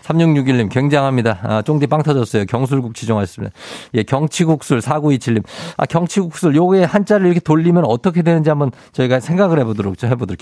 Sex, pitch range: male, 110-165 Hz